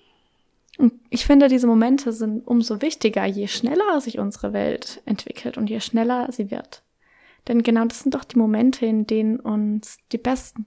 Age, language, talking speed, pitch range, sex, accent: 20-39, German, 170 wpm, 220-250 Hz, female, German